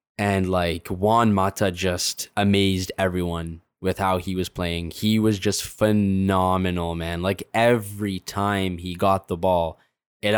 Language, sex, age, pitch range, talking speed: English, male, 10-29, 95-110 Hz, 145 wpm